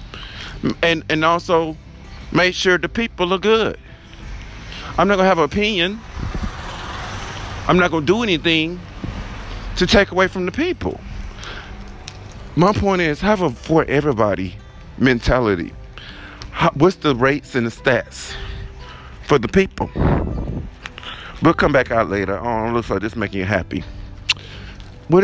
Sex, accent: male, American